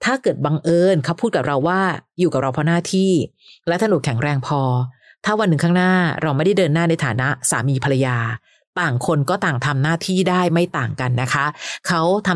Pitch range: 140-180 Hz